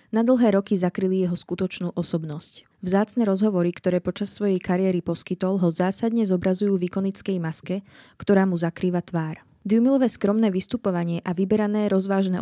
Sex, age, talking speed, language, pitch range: female, 20-39, 140 wpm, Slovak, 180-210 Hz